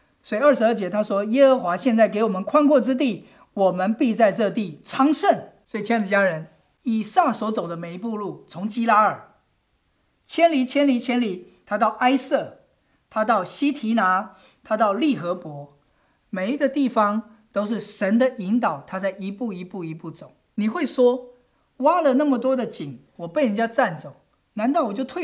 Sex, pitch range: male, 200-270 Hz